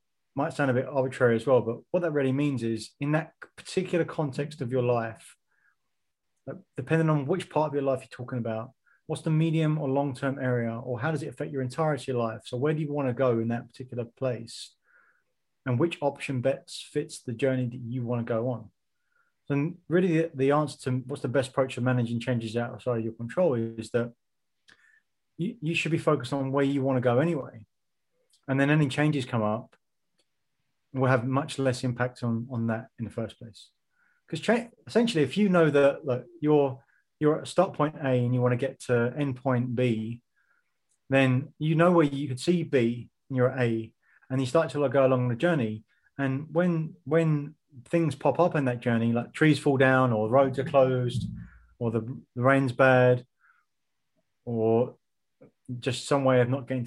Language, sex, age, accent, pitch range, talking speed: English, male, 20-39, British, 125-150 Hz, 200 wpm